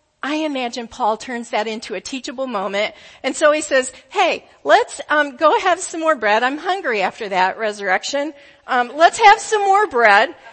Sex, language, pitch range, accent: female, English, 265-355 Hz, American